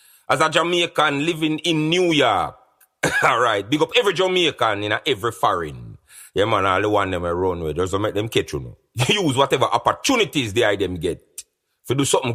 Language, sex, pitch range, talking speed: English, male, 115-170 Hz, 195 wpm